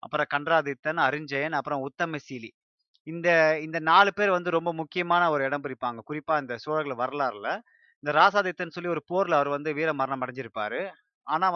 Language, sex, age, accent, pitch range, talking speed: Tamil, male, 30-49, native, 140-175 Hz, 150 wpm